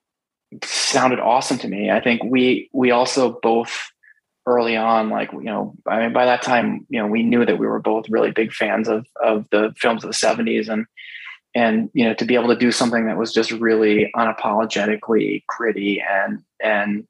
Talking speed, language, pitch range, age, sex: 195 wpm, English, 110-125 Hz, 20-39, male